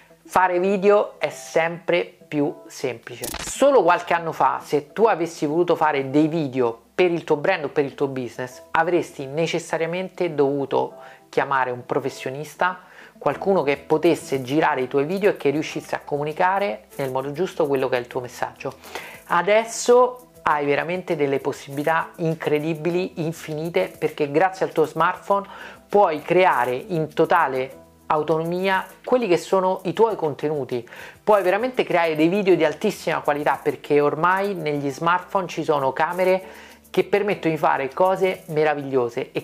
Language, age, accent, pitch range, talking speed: Italian, 40-59, native, 145-185 Hz, 150 wpm